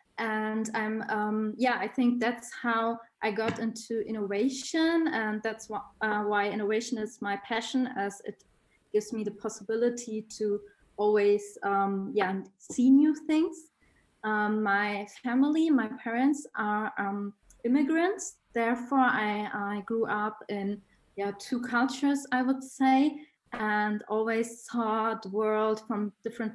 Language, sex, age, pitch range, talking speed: English, female, 20-39, 205-240 Hz, 140 wpm